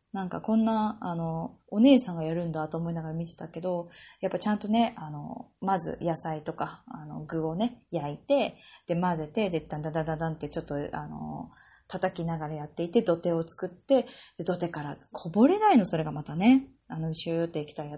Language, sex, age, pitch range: Japanese, female, 20-39, 160-215 Hz